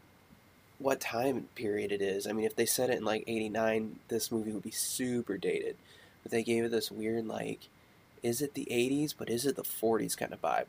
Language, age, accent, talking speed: English, 20-39, American, 220 wpm